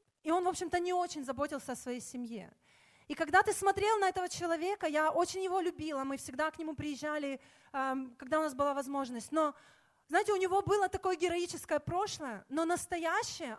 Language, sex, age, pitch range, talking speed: Russian, female, 20-39, 290-370 Hz, 180 wpm